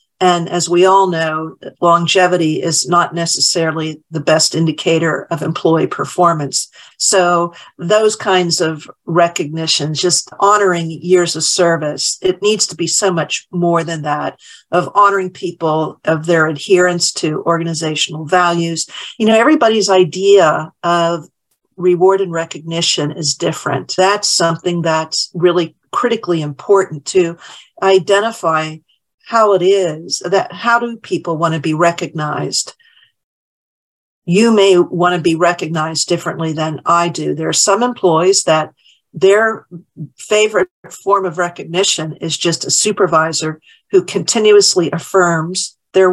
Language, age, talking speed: English, 50-69, 130 wpm